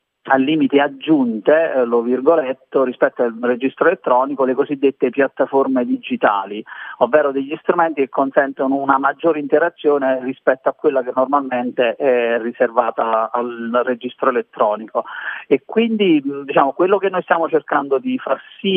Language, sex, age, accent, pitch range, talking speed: Italian, male, 40-59, native, 125-160 Hz, 135 wpm